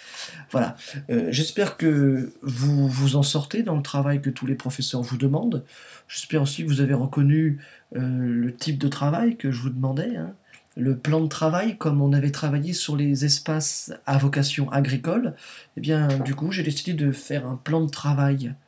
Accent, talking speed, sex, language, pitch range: French, 190 wpm, male, French, 130-155 Hz